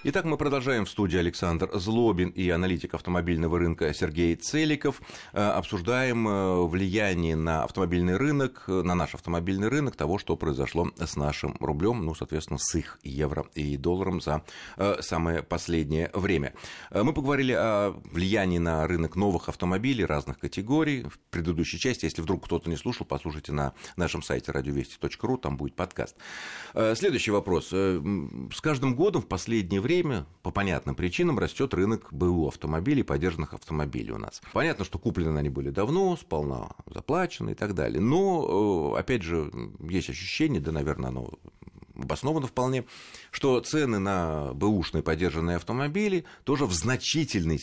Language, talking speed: Russian, 145 wpm